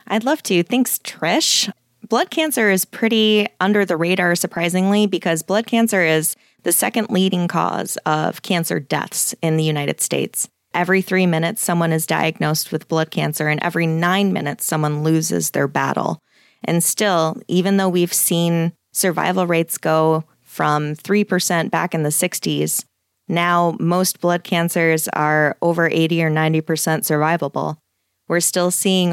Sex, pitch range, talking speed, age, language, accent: female, 160-195 Hz, 150 wpm, 20-39, English, American